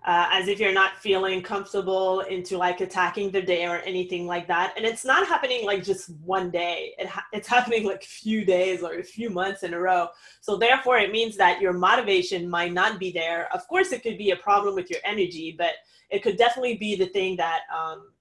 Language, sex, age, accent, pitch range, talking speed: English, female, 20-39, American, 185-235 Hz, 225 wpm